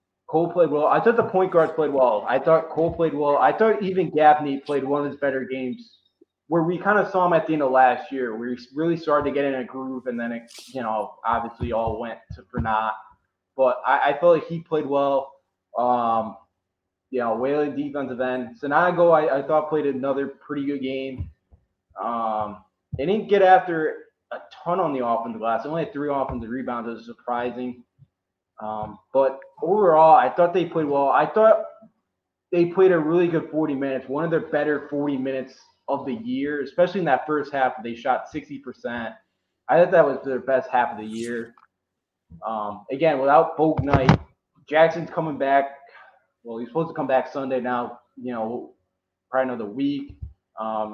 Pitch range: 120-155 Hz